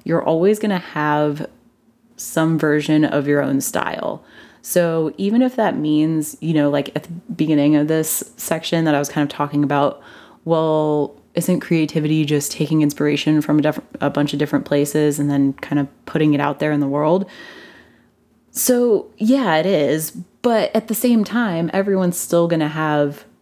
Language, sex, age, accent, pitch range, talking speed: English, female, 20-39, American, 145-175 Hz, 180 wpm